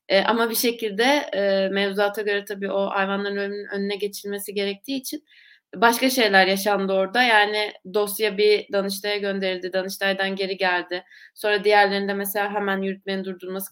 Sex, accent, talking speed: female, native, 140 wpm